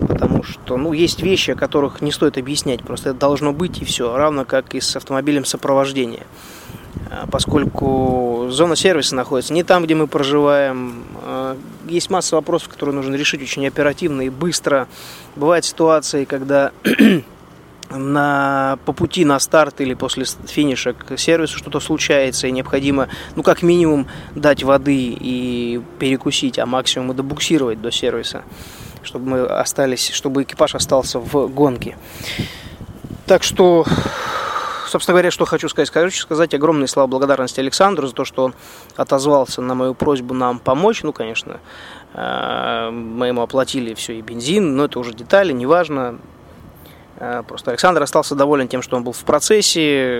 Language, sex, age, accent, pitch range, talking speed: Russian, male, 20-39, native, 130-155 Hz, 150 wpm